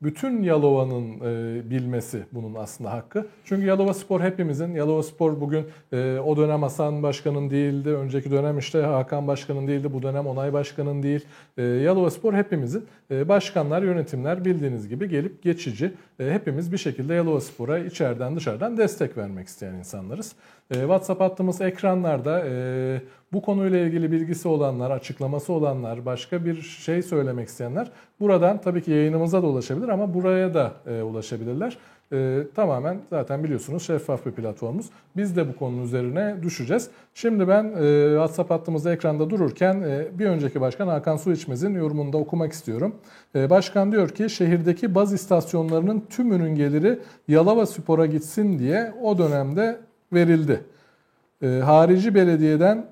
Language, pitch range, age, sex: Turkish, 140-190 Hz, 40-59, male